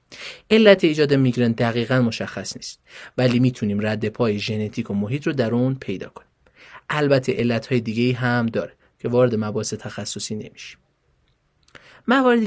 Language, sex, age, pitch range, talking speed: Persian, male, 30-49, 110-140 Hz, 145 wpm